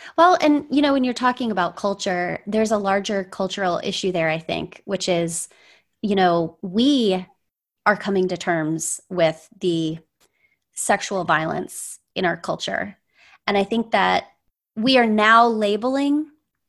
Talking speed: 145 wpm